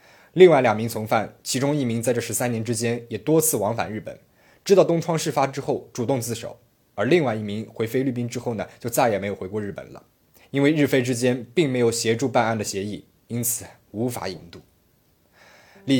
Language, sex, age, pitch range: Chinese, male, 20-39, 105-130 Hz